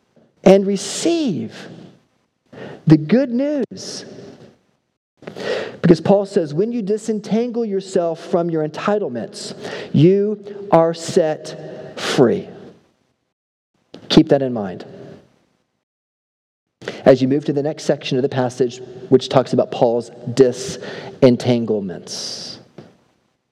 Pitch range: 130-180 Hz